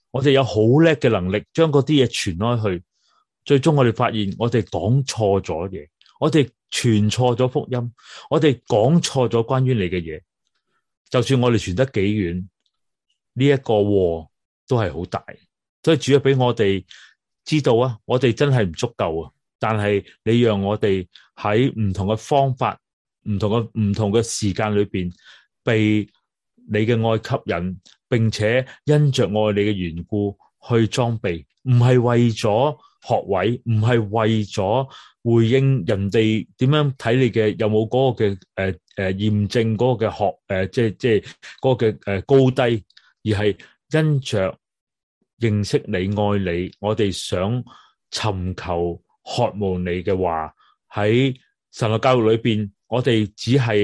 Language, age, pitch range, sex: Chinese, 30-49, 100-125 Hz, male